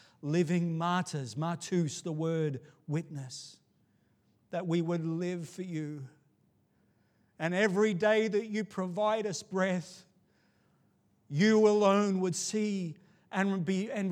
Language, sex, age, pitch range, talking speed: English, male, 40-59, 155-205 Hz, 115 wpm